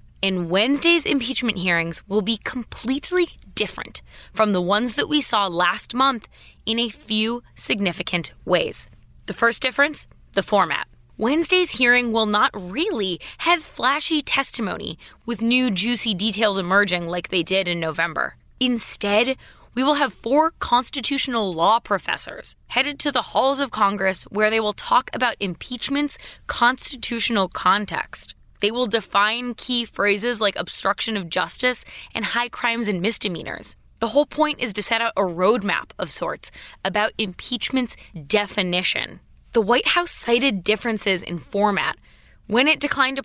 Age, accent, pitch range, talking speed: 20-39, American, 200-265 Hz, 145 wpm